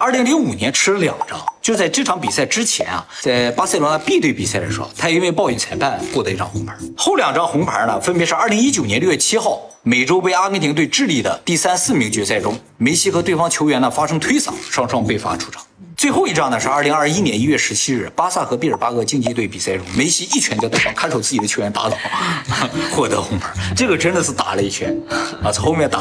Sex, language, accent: male, Chinese, native